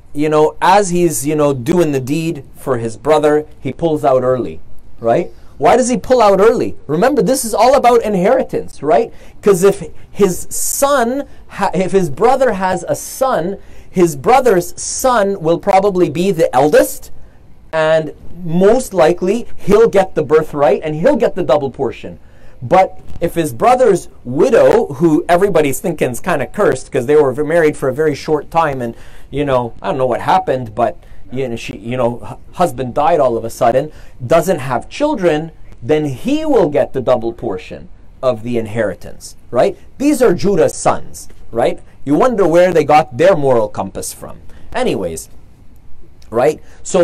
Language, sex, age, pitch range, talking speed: English, male, 30-49, 130-195 Hz, 165 wpm